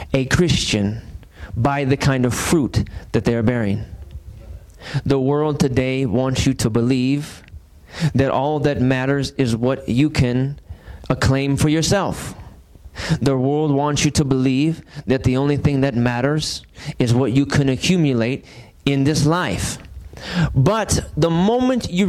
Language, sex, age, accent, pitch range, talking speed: English, male, 30-49, American, 120-150 Hz, 145 wpm